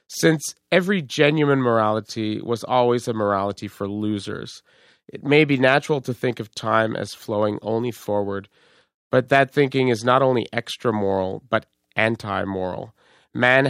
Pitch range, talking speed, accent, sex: 105-130 Hz, 140 wpm, American, male